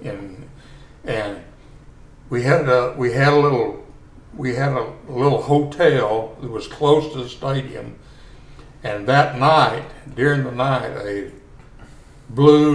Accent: American